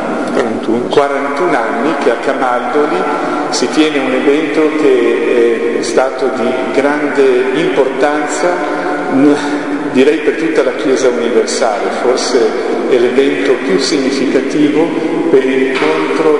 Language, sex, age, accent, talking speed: Italian, male, 50-69, native, 105 wpm